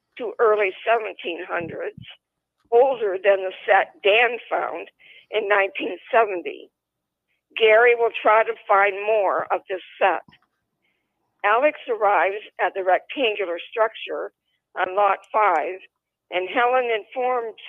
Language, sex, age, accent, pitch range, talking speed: English, female, 50-69, American, 200-260 Hz, 110 wpm